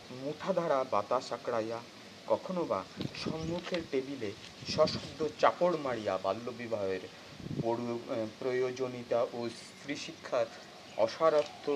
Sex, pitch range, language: male, 110-155 Hz, Bengali